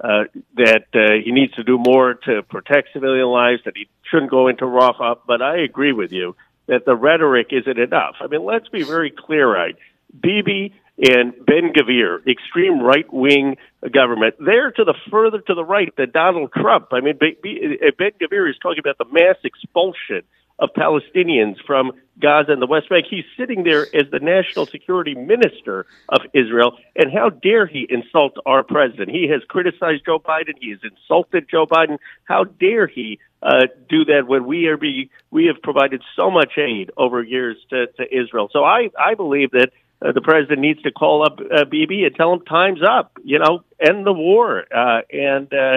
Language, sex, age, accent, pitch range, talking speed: English, male, 50-69, American, 130-175 Hz, 190 wpm